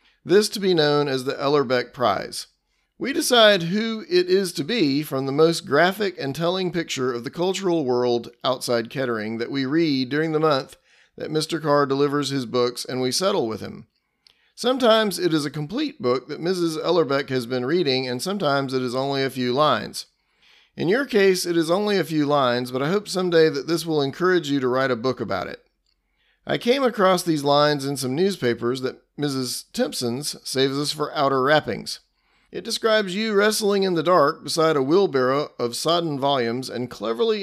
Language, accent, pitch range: English, American, 130-180 Hz